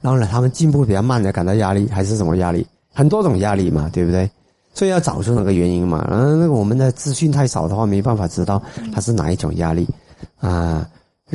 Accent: native